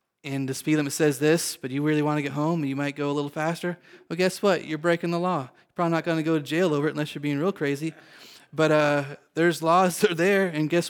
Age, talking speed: 30-49, 275 wpm